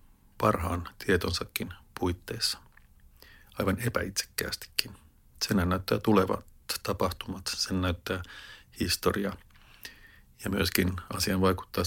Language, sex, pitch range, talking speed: Finnish, male, 90-105 Hz, 80 wpm